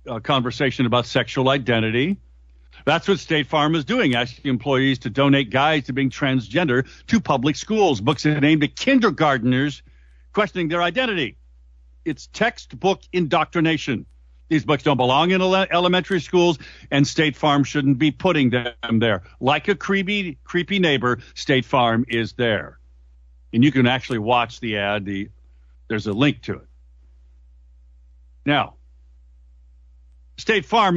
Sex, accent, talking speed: male, American, 140 wpm